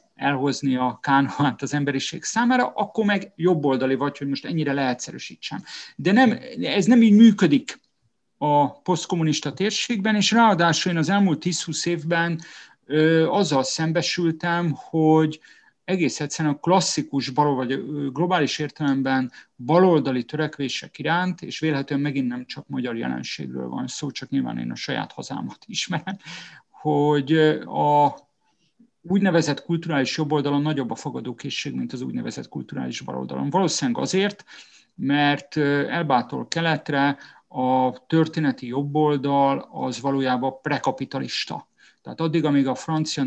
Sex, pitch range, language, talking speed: male, 135-170 Hz, Hungarian, 130 wpm